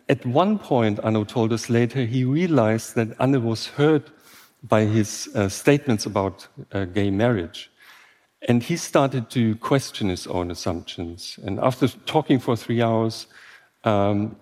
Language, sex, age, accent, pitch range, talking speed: English, male, 50-69, German, 105-130 Hz, 150 wpm